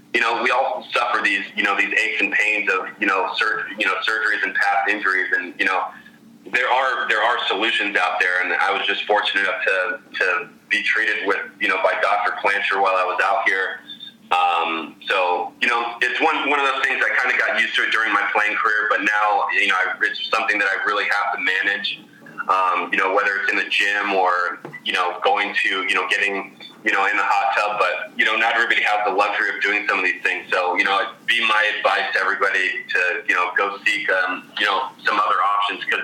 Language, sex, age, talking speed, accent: English, male, 20-39, 240 wpm, American